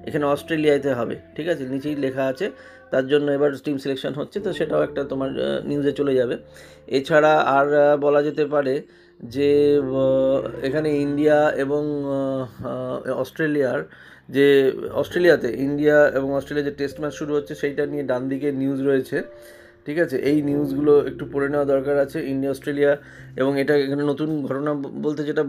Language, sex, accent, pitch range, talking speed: Bengali, male, native, 135-150 Hz, 150 wpm